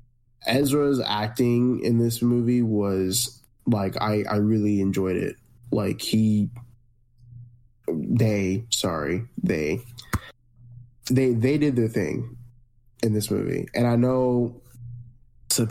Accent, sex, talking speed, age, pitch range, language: American, male, 110 wpm, 10-29, 105-120 Hz, English